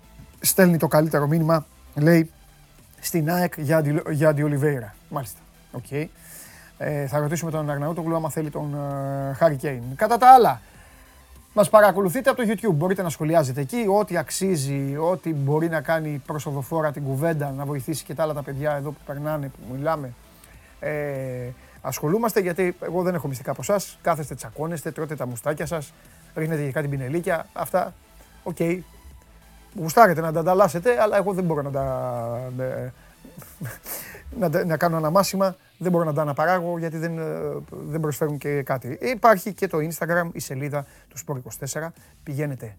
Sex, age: male, 30-49